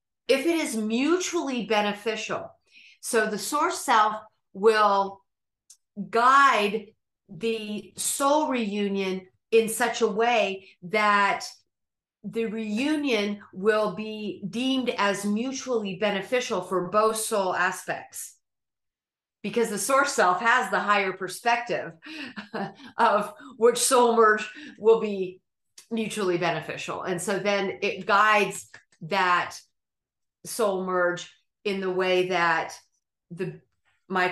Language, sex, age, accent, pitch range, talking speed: English, female, 40-59, American, 180-225 Hz, 105 wpm